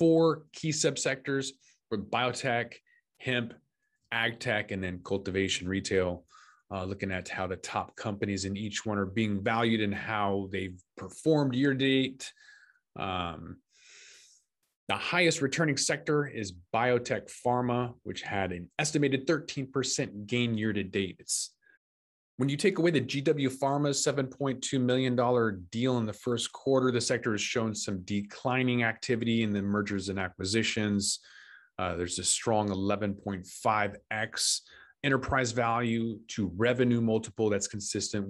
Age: 20-39